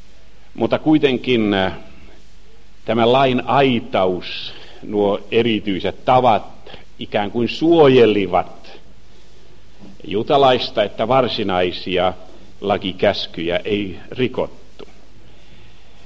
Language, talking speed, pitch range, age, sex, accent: Finnish, 65 wpm, 95-125 Hz, 60-79, male, native